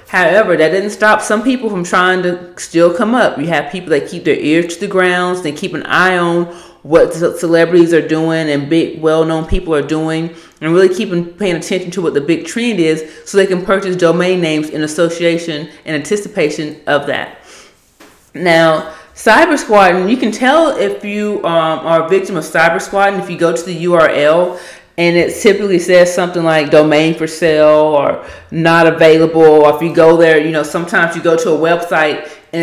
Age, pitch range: 30-49, 160-200 Hz